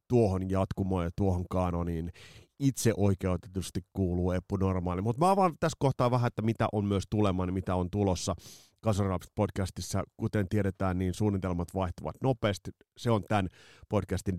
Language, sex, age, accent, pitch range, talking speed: Finnish, male, 30-49, native, 90-110 Hz, 140 wpm